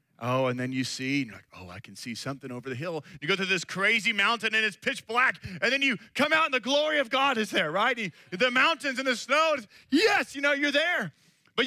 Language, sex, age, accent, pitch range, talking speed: English, male, 30-49, American, 155-240 Hz, 255 wpm